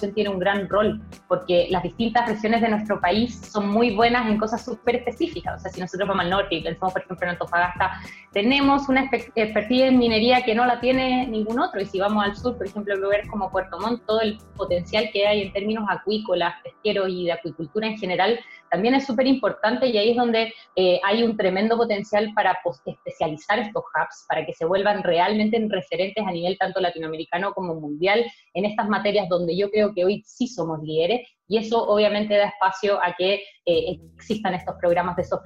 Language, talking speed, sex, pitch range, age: Spanish, 205 wpm, female, 180-215 Hz, 20-39